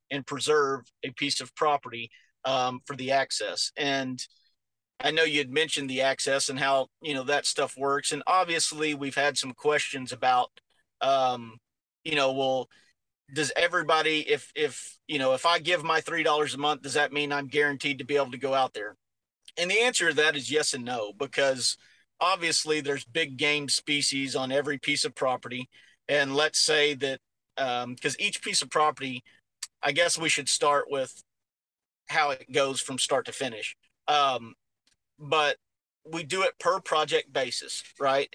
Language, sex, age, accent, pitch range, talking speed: English, male, 40-59, American, 135-155 Hz, 175 wpm